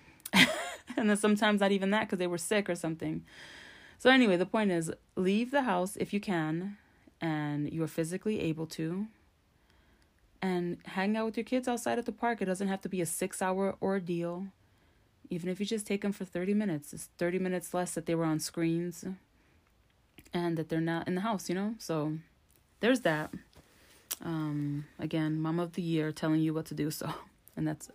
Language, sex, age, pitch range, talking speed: English, female, 20-39, 160-200 Hz, 200 wpm